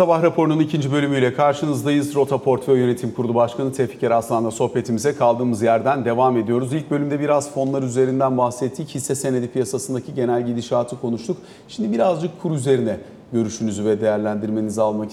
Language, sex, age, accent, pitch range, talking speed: Turkish, male, 40-59, native, 120-145 Hz, 145 wpm